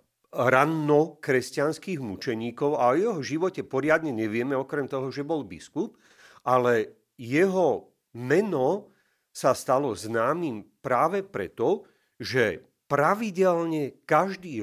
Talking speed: 105 wpm